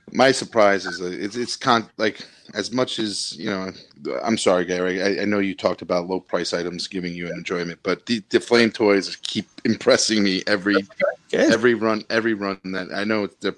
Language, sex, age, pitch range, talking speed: English, male, 30-49, 85-105 Hz, 205 wpm